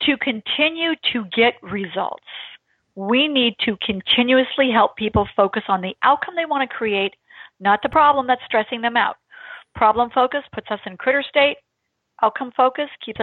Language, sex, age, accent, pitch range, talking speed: English, female, 40-59, American, 215-275 Hz, 165 wpm